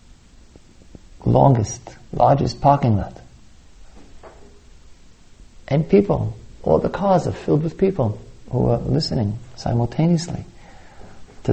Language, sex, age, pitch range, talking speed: English, male, 50-69, 80-105 Hz, 95 wpm